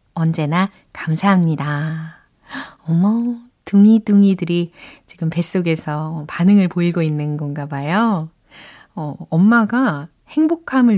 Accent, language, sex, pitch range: native, Korean, female, 160-225 Hz